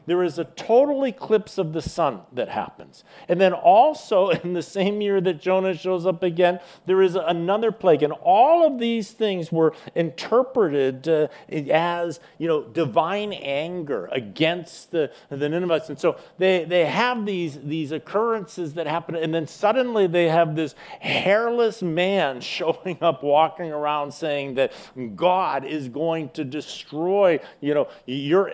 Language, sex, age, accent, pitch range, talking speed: English, male, 50-69, American, 150-195 Hz, 150 wpm